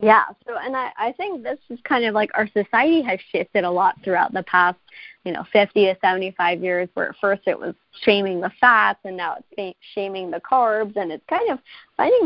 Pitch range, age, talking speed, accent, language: 180-235 Hz, 20-39, 220 wpm, American, English